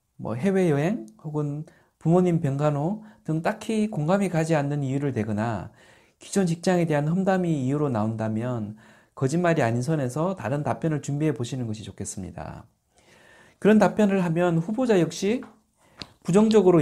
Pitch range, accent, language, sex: 120-175 Hz, native, Korean, male